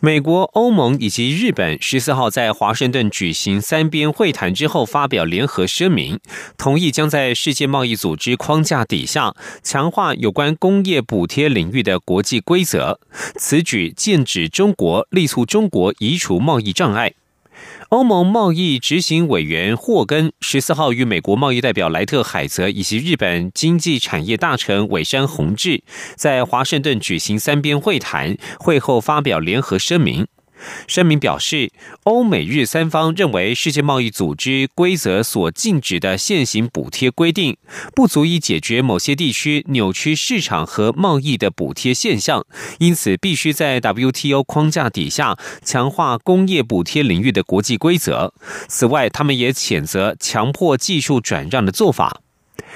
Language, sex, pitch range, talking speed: German, male, 115-165 Hz, 65 wpm